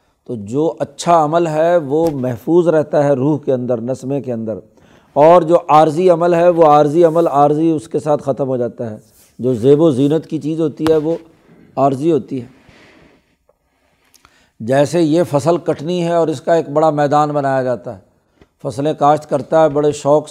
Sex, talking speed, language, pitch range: male, 185 wpm, Urdu, 135-155 Hz